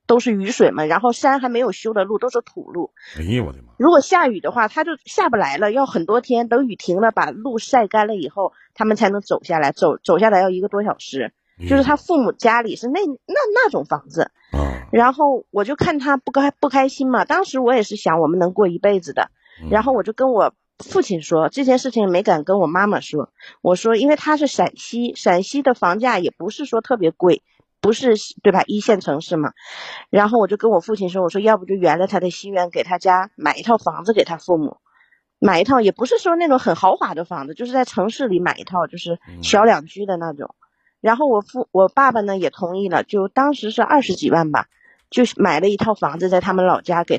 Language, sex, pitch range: Chinese, female, 180-260 Hz